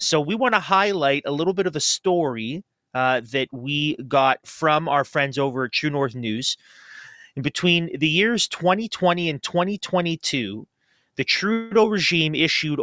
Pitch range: 135-180 Hz